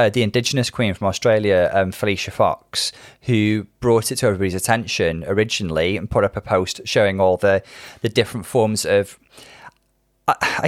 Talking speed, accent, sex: 170 wpm, British, male